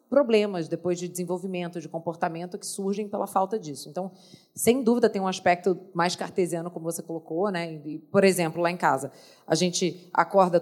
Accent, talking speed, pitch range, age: Brazilian, 180 wpm, 180-220 Hz, 30-49